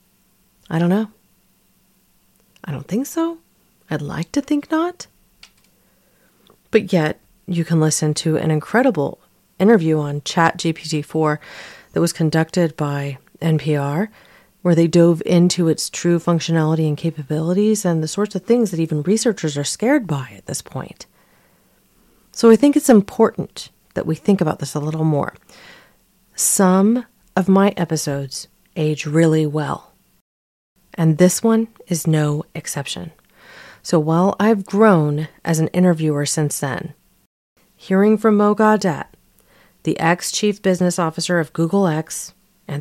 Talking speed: 140 wpm